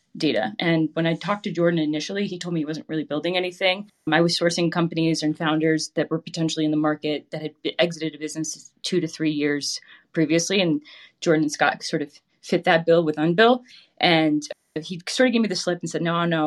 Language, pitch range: English, 155-180 Hz